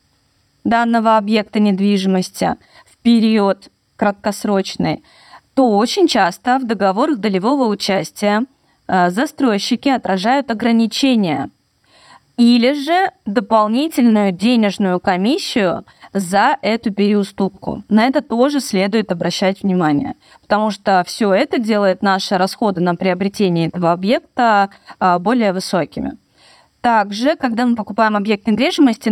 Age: 20-39